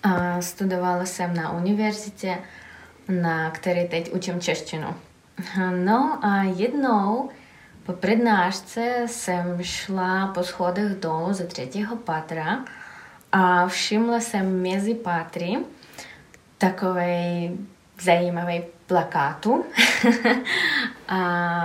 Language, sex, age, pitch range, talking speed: Czech, female, 20-39, 170-205 Hz, 90 wpm